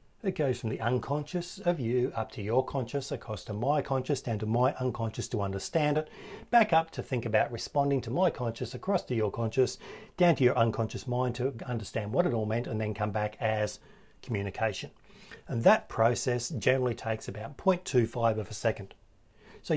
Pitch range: 110-150 Hz